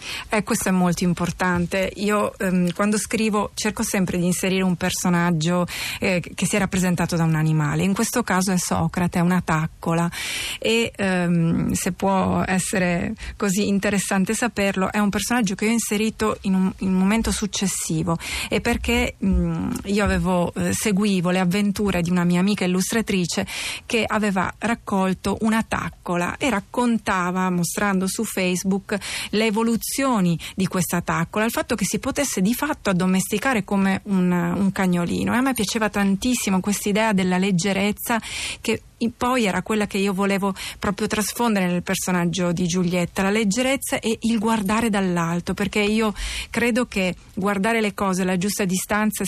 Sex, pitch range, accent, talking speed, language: female, 185-215 Hz, native, 155 wpm, Italian